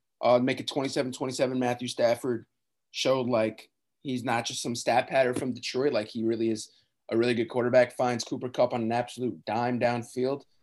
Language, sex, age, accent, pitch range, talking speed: English, male, 20-39, American, 115-130 Hz, 185 wpm